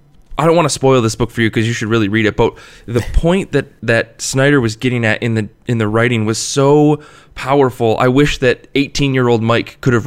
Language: English